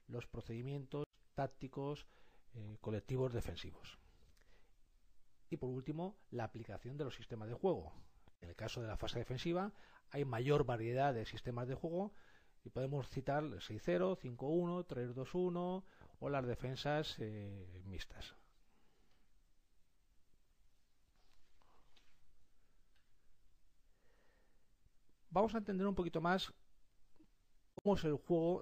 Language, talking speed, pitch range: Spanish, 105 wpm, 115-175 Hz